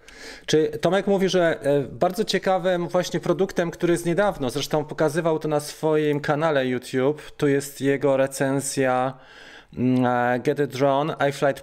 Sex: male